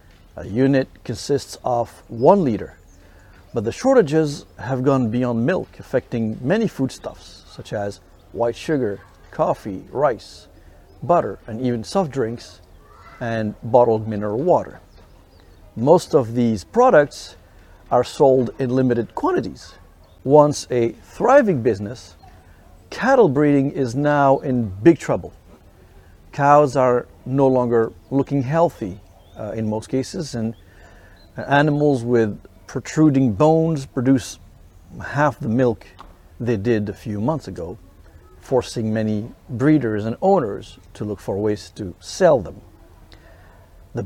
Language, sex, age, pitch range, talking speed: English, male, 50-69, 95-135 Hz, 120 wpm